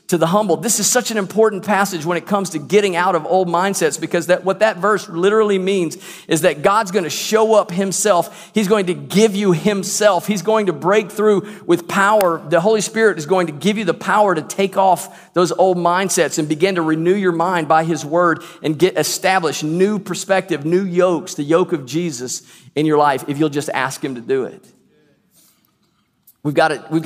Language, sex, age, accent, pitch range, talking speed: English, male, 50-69, American, 155-190 Hz, 215 wpm